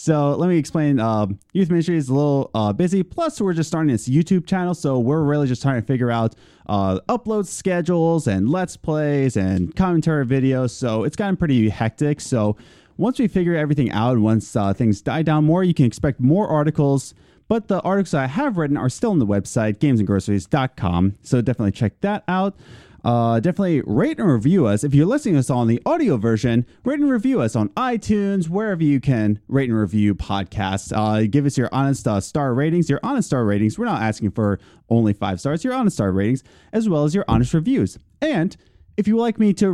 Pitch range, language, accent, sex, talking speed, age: 110-180 Hz, English, American, male, 210 wpm, 30-49